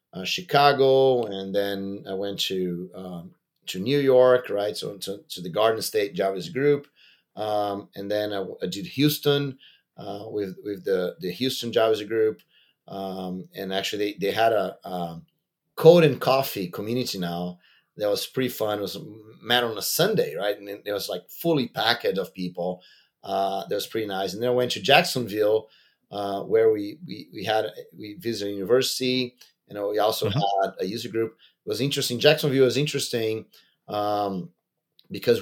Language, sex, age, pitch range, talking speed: English, male, 30-49, 95-130 Hz, 175 wpm